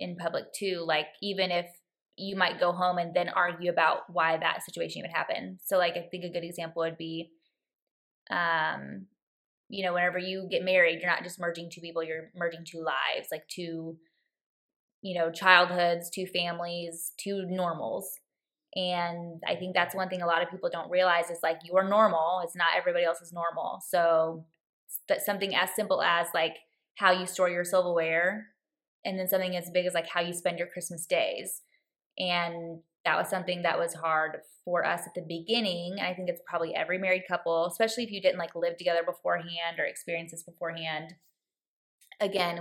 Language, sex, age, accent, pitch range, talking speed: English, female, 20-39, American, 170-185 Hz, 190 wpm